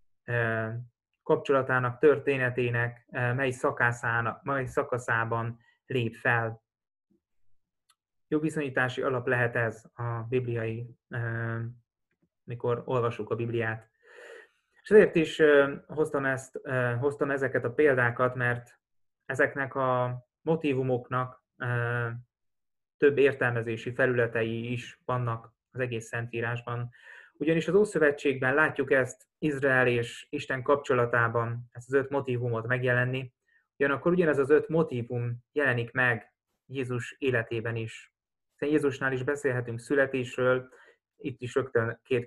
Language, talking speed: Hungarian, 100 wpm